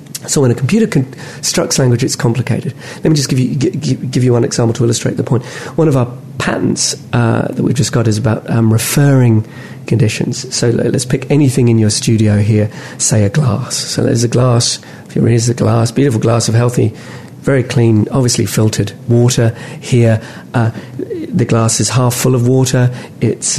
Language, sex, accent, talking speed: English, male, British, 185 wpm